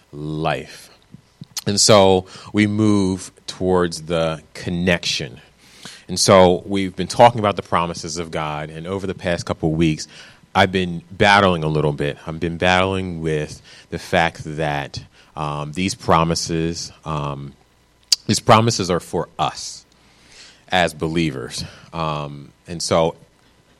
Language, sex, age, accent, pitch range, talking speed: English, male, 30-49, American, 80-95 Hz, 130 wpm